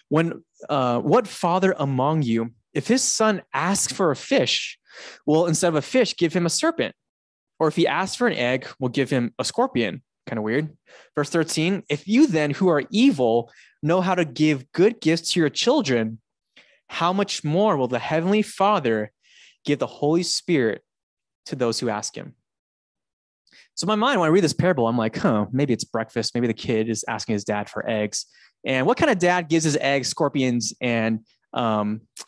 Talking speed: 195 wpm